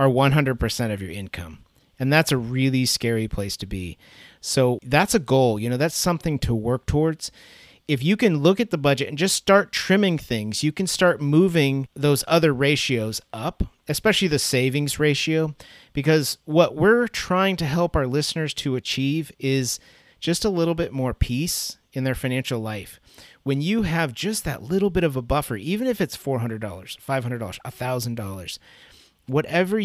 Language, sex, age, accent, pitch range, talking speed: English, male, 30-49, American, 125-165 Hz, 175 wpm